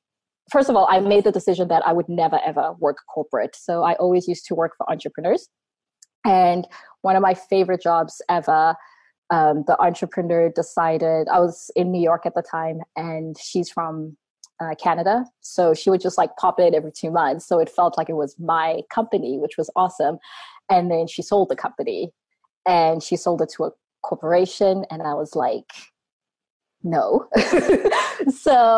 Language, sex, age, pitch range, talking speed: English, female, 20-39, 165-195 Hz, 180 wpm